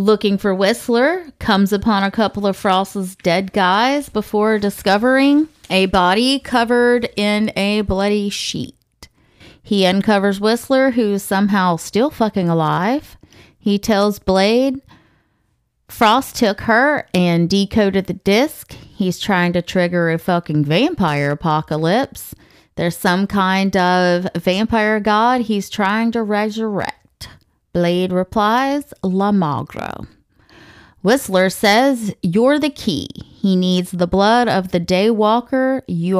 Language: English